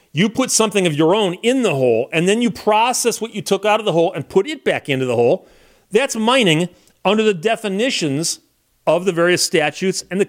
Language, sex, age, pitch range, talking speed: English, male, 40-59, 165-225 Hz, 220 wpm